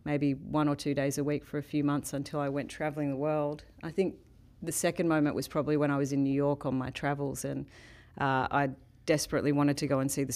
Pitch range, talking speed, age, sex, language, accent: 140-150 Hz, 250 wpm, 40-59, female, English, Australian